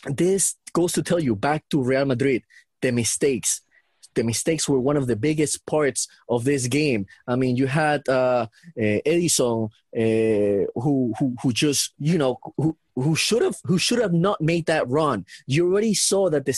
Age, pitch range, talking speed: 30-49, 140-180 Hz, 175 wpm